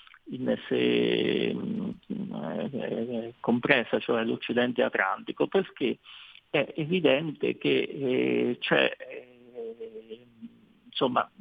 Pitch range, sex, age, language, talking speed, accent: 120-170 Hz, male, 50-69, Italian, 100 wpm, native